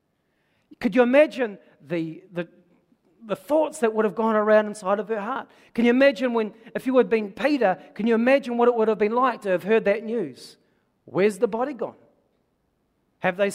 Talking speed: 200 wpm